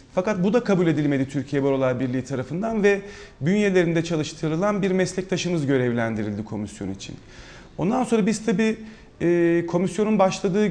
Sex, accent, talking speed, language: male, native, 130 wpm, Turkish